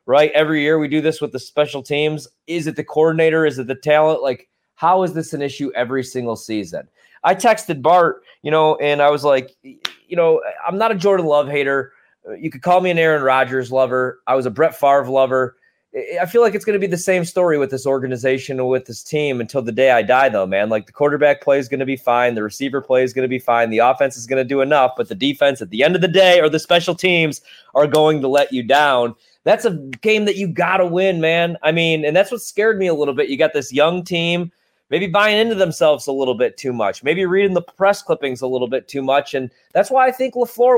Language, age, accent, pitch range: English, 20-39, American, 135-185 Hz